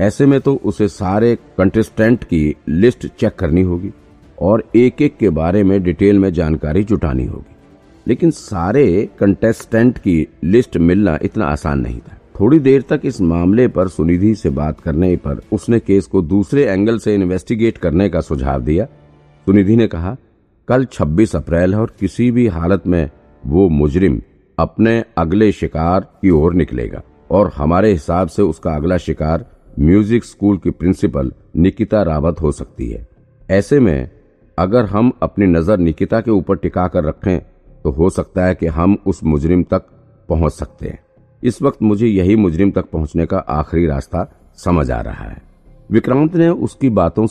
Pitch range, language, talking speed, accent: 80-110 Hz, Hindi, 130 wpm, native